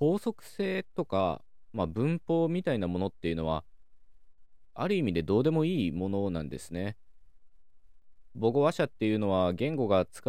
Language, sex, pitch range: Japanese, male, 85-120 Hz